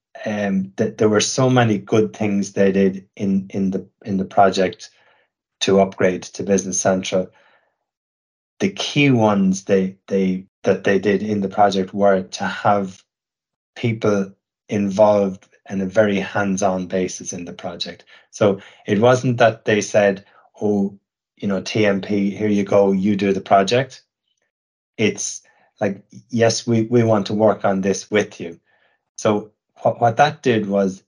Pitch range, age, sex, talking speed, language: 95-110 Hz, 30-49, male, 155 wpm, English